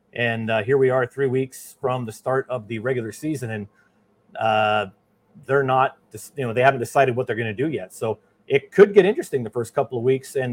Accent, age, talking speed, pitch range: American, 40-59, 230 wpm, 120-150 Hz